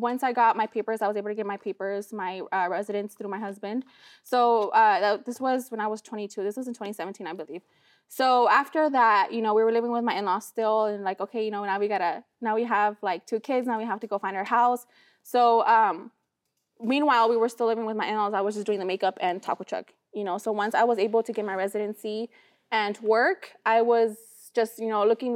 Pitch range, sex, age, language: 205-240 Hz, female, 20-39, English